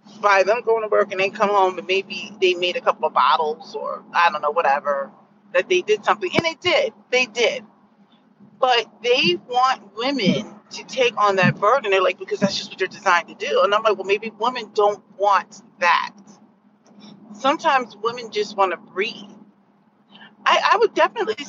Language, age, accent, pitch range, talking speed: English, 40-59, American, 195-225 Hz, 195 wpm